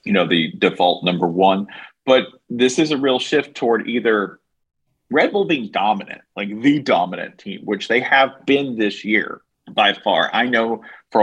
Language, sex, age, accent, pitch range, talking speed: English, male, 40-59, American, 95-110 Hz, 175 wpm